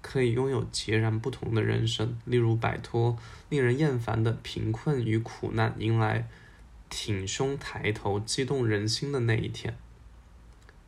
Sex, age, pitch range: male, 10-29, 110-130 Hz